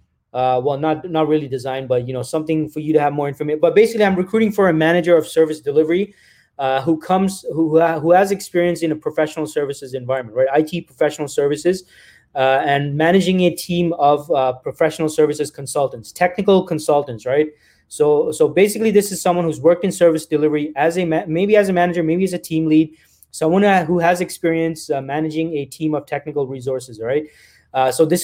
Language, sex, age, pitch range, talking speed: English, male, 20-39, 150-180 Hz, 200 wpm